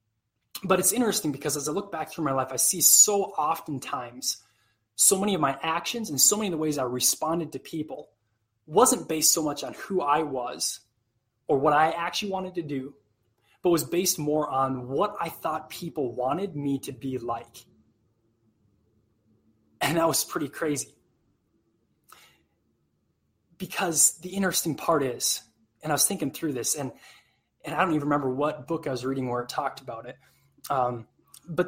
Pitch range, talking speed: 125-170 Hz, 175 wpm